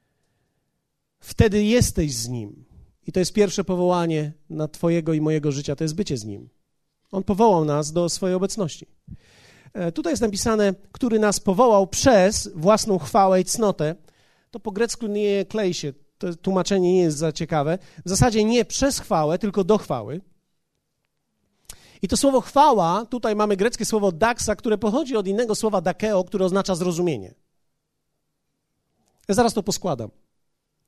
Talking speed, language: 155 wpm, Polish